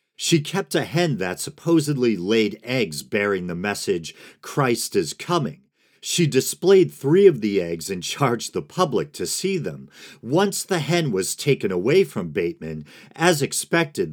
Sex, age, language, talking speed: male, 50-69, English, 155 wpm